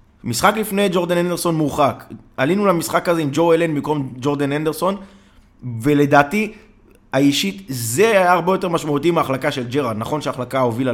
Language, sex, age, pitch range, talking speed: Hebrew, male, 20-39, 120-165 Hz, 150 wpm